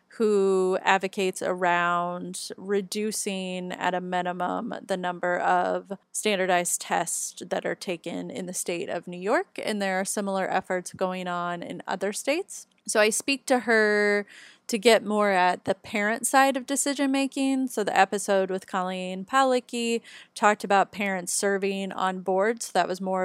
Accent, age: American, 30-49